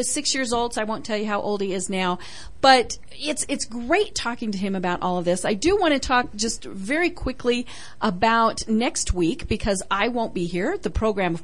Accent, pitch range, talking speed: American, 200-265 Hz, 230 wpm